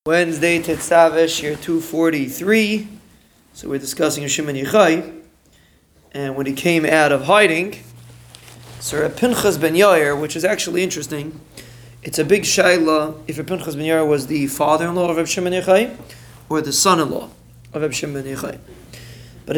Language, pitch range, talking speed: English, 140-170 Hz, 135 wpm